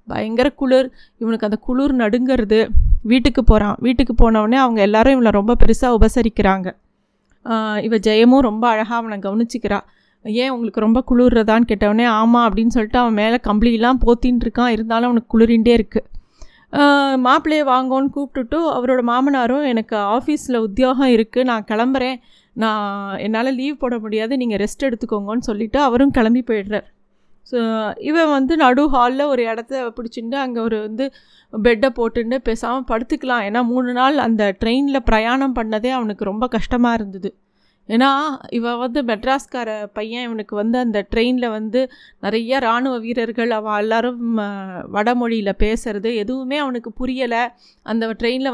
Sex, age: female, 30-49